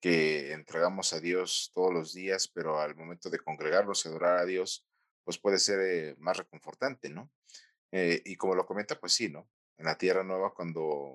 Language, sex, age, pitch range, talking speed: Spanish, male, 40-59, 80-95 Hz, 195 wpm